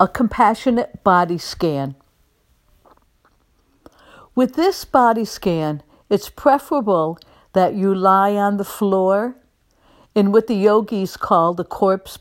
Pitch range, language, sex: 180-230 Hz, English, female